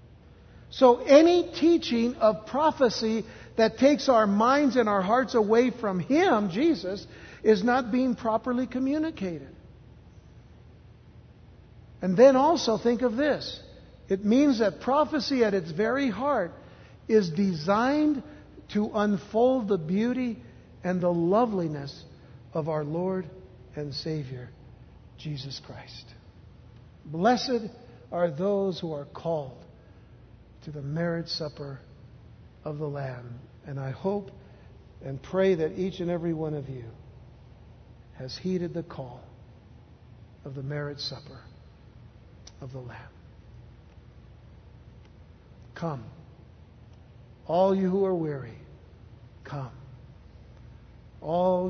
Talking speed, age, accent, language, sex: 110 wpm, 60-79, American, English, male